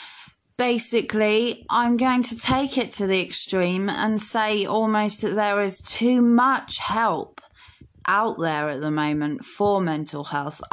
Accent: British